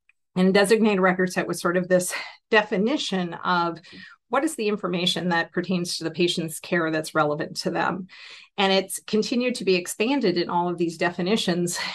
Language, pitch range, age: English, 175-205 Hz, 40-59